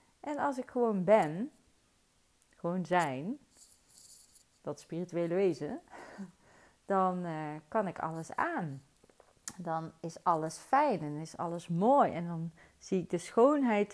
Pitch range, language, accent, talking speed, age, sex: 160-200 Hz, Dutch, Dutch, 130 wpm, 40-59, female